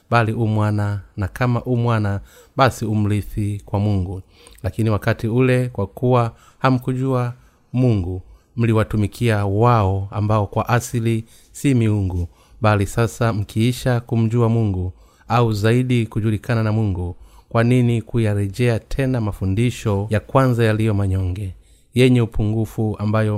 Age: 30-49